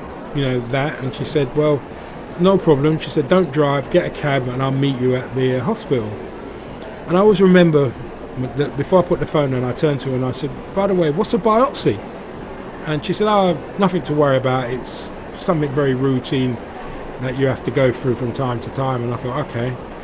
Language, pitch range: English, 130-160 Hz